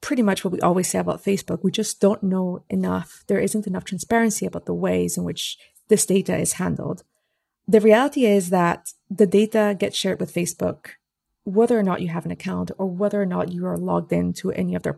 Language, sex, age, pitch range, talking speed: English, female, 30-49, 175-210 Hz, 220 wpm